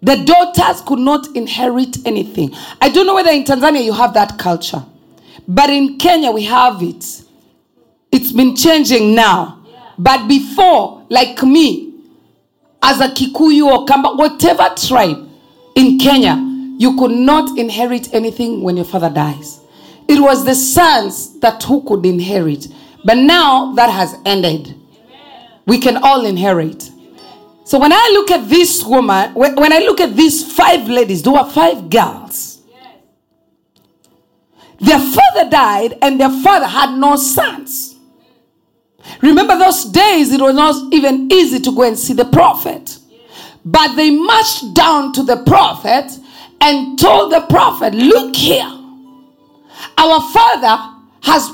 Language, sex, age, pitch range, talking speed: English, female, 40-59, 240-310 Hz, 140 wpm